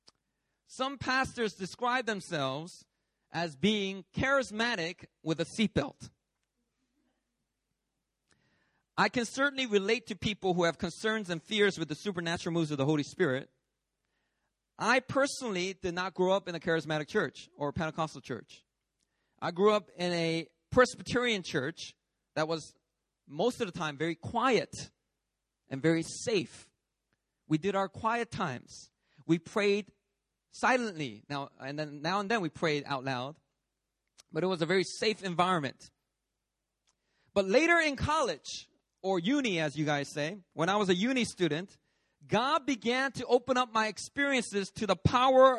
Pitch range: 165-230 Hz